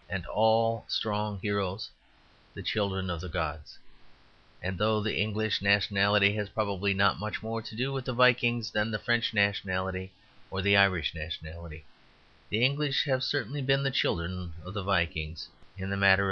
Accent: American